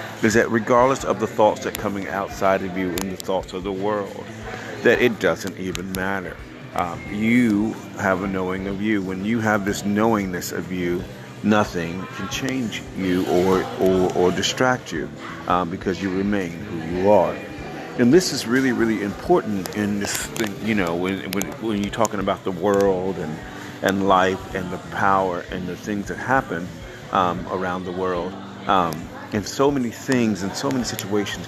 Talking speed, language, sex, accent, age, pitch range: 185 wpm, English, male, American, 40-59, 95-115 Hz